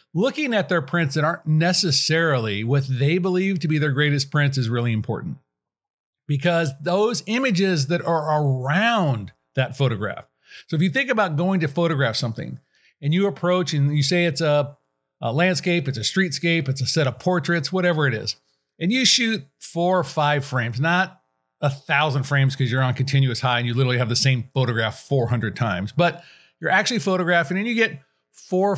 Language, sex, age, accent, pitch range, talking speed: English, male, 50-69, American, 135-175 Hz, 185 wpm